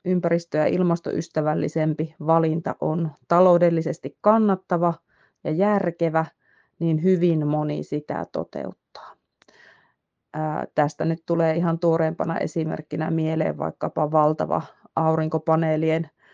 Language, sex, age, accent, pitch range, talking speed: Finnish, female, 30-49, native, 155-180 Hz, 90 wpm